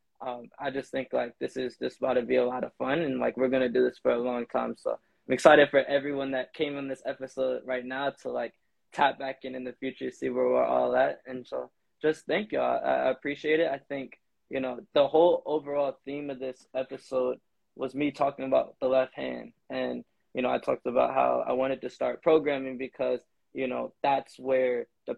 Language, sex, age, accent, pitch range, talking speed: English, male, 20-39, American, 125-140 Hz, 235 wpm